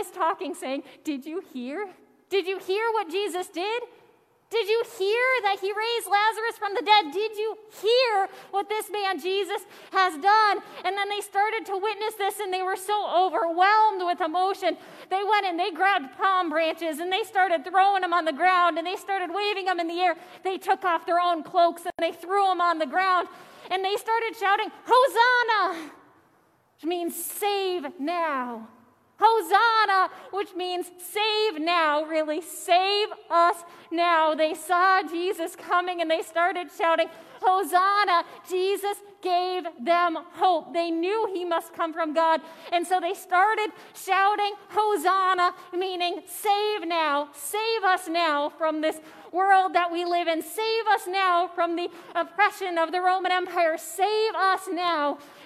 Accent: American